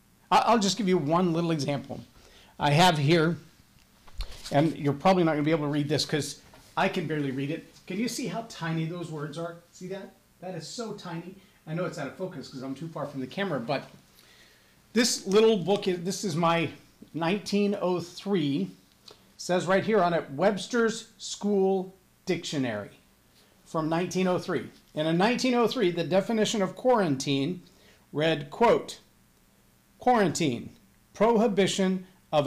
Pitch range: 160-210 Hz